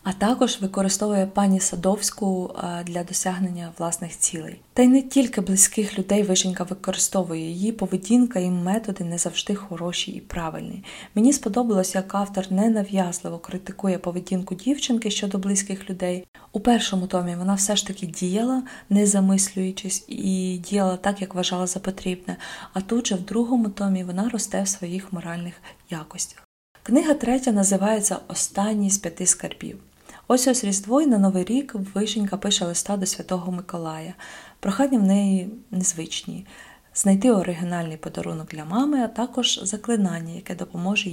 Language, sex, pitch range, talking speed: Ukrainian, female, 180-210 Hz, 145 wpm